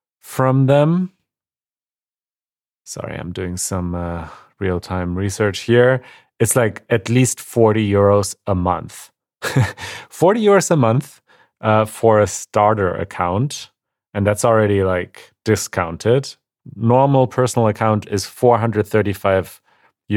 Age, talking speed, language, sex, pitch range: 30-49, 110 wpm, English, male, 100-115 Hz